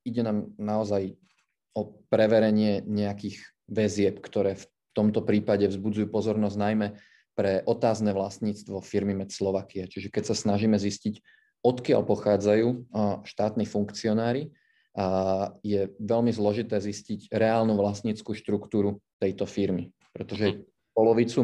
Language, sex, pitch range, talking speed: Slovak, male, 100-110 Hz, 110 wpm